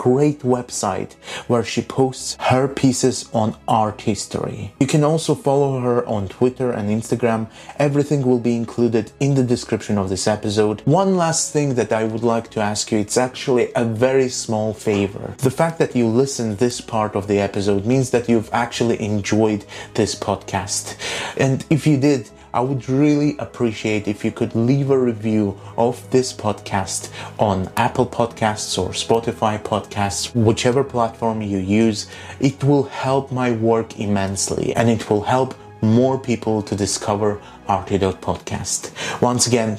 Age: 30-49